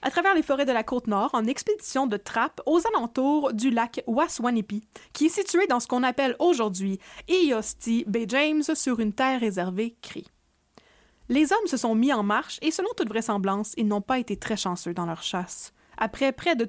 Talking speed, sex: 200 wpm, female